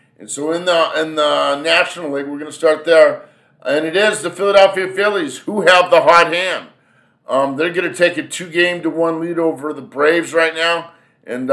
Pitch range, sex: 140-170 Hz, male